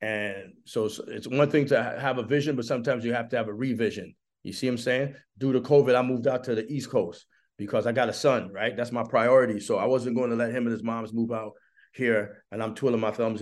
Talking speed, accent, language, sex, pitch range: 270 wpm, American, English, male, 110-130 Hz